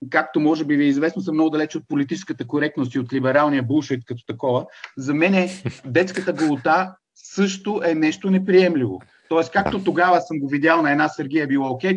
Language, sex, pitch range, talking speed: Bulgarian, male, 135-175 Hz, 190 wpm